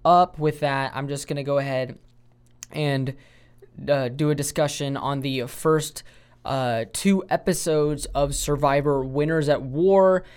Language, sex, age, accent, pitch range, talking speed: English, male, 10-29, American, 130-155 Hz, 145 wpm